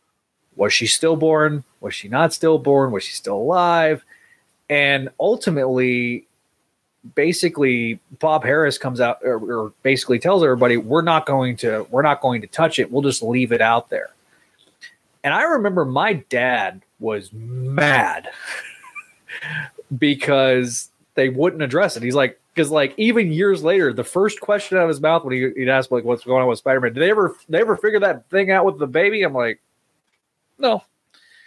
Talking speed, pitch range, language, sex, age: 170 wpm, 125-170 Hz, English, male, 30-49